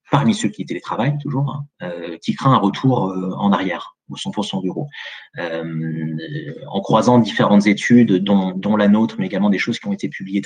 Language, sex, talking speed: French, male, 190 wpm